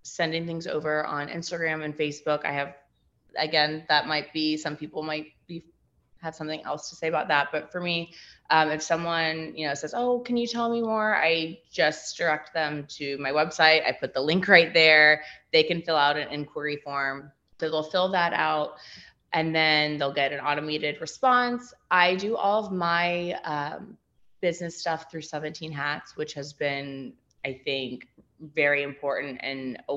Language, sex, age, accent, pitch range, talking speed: English, female, 20-39, American, 145-170 Hz, 180 wpm